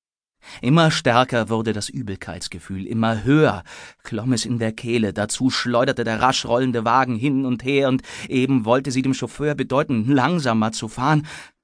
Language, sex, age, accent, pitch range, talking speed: German, male, 30-49, German, 105-130 Hz, 160 wpm